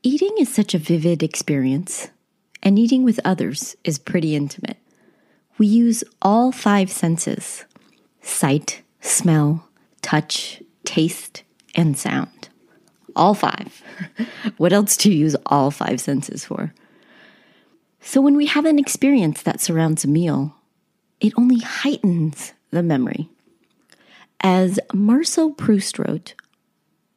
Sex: female